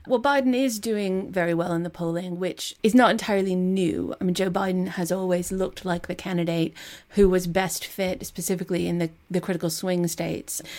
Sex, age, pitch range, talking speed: female, 30-49, 160-180 Hz, 195 wpm